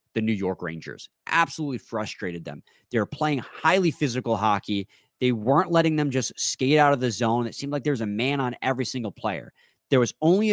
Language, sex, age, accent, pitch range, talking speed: English, male, 30-49, American, 115-155 Hz, 210 wpm